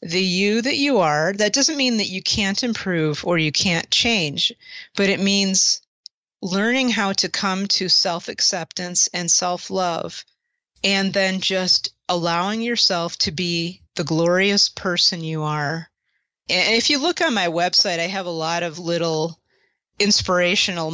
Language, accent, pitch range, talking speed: English, American, 170-205 Hz, 150 wpm